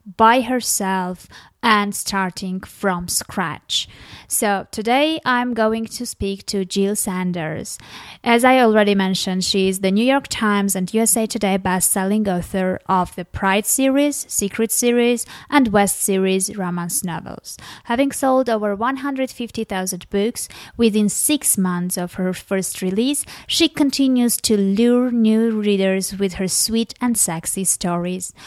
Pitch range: 185-225 Hz